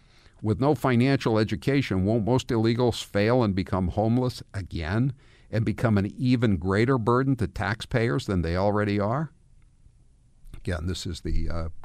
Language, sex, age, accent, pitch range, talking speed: English, male, 50-69, American, 90-115 Hz, 145 wpm